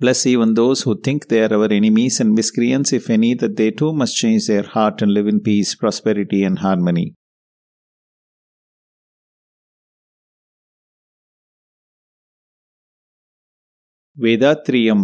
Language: English